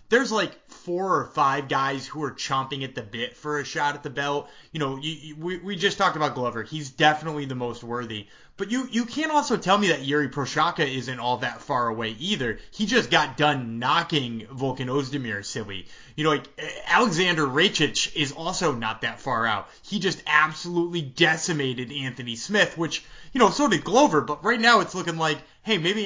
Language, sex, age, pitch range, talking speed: English, male, 20-39, 135-180 Hz, 205 wpm